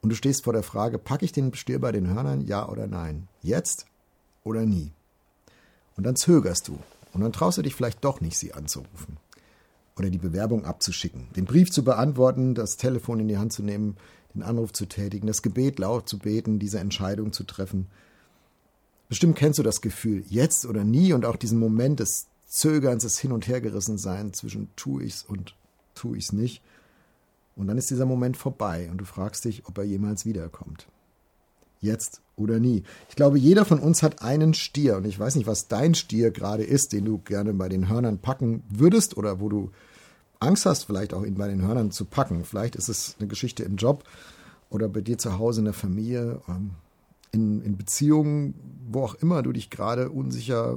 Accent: German